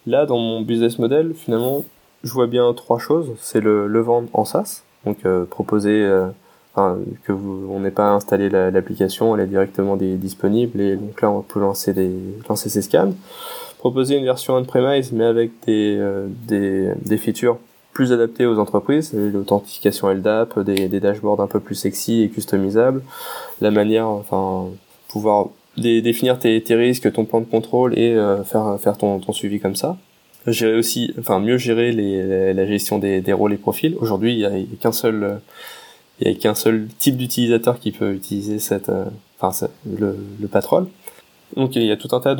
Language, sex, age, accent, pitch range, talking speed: French, male, 20-39, French, 100-115 Hz, 190 wpm